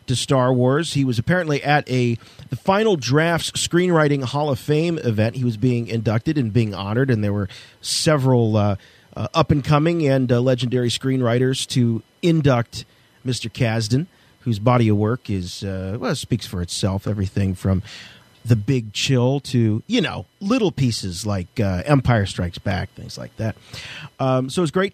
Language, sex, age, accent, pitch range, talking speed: English, male, 40-59, American, 115-155 Hz, 170 wpm